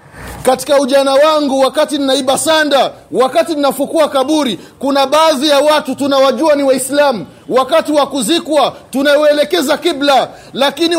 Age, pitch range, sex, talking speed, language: 30-49, 180-290 Hz, male, 120 wpm, Swahili